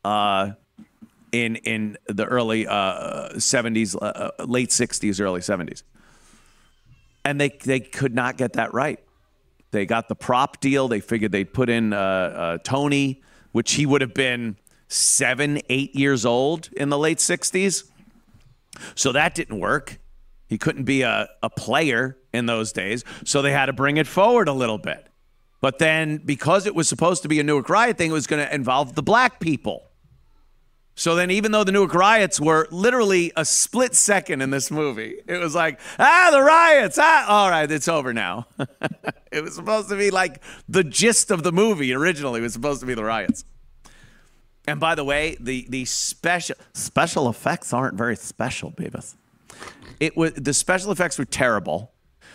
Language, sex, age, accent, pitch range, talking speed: English, male, 40-59, American, 125-180 Hz, 180 wpm